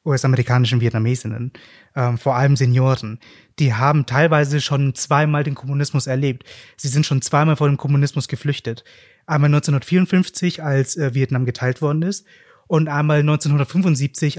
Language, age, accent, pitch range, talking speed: German, 30-49, German, 130-150 Hz, 140 wpm